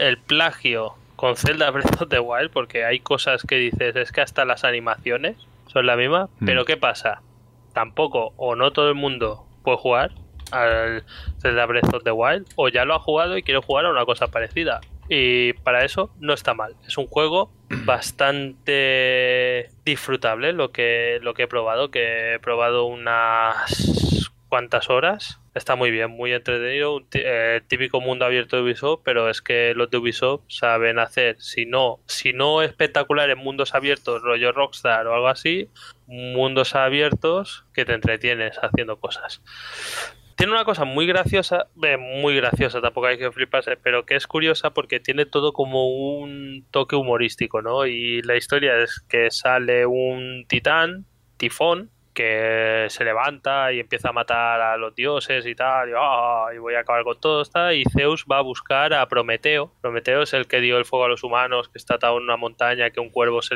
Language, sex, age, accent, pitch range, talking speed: English, male, 20-39, Spanish, 115-140 Hz, 180 wpm